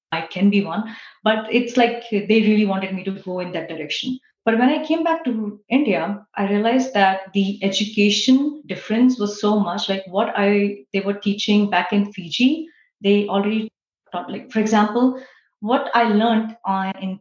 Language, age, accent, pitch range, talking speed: English, 30-49, Indian, 190-225 Hz, 180 wpm